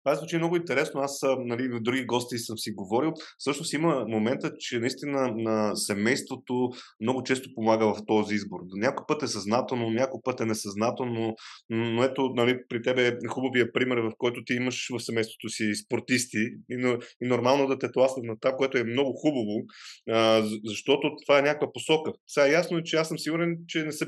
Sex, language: male, Bulgarian